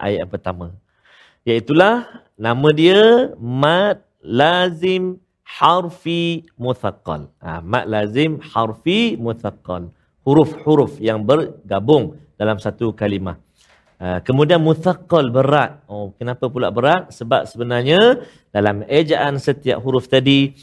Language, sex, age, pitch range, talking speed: Malayalam, male, 50-69, 115-165 Hz, 110 wpm